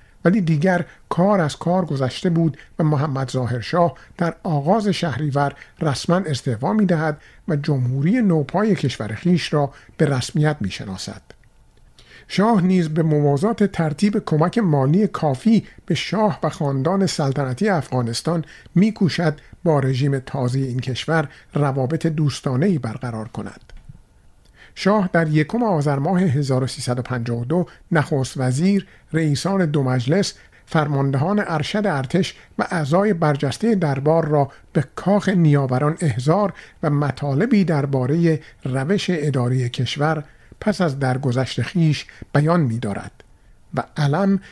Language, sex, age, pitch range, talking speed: Persian, male, 50-69, 135-175 Hz, 120 wpm